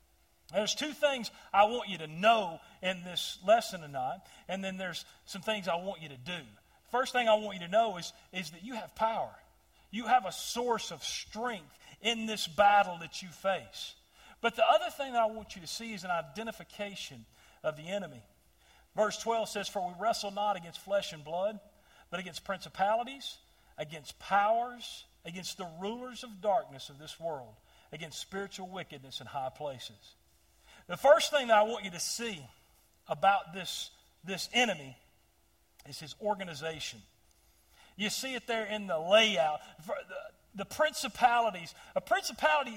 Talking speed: 170 wpm